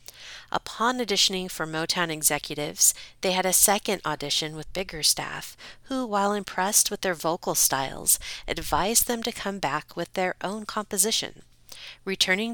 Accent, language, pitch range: American, English, 160-200 Hz